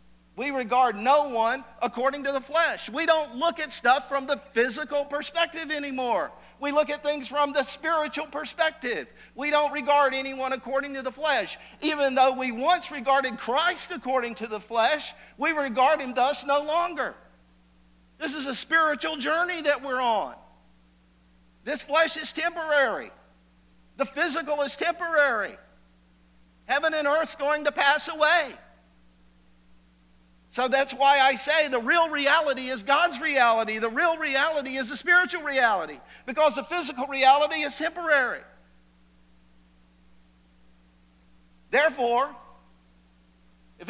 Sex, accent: male, American